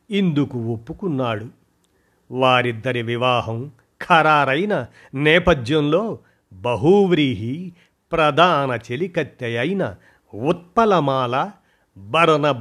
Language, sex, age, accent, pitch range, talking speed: Telugu, male, 50-69, native, 120-160 Hz, 55 wpm